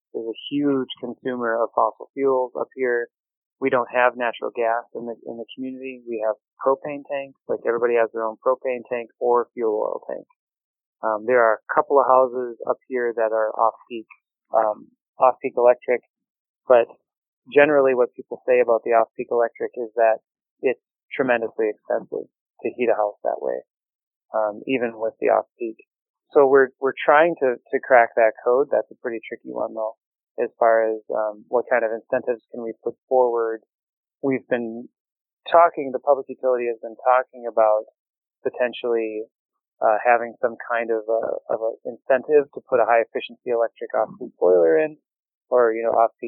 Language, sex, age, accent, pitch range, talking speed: English, male, 20-39, American, 115-130 Hz, 175 wpm